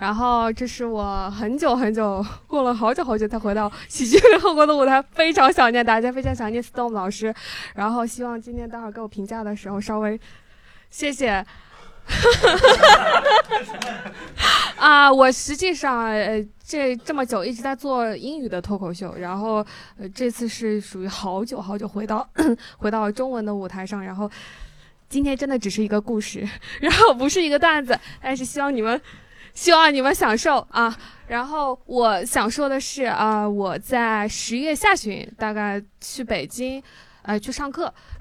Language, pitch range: Chinese, 215-275 Hz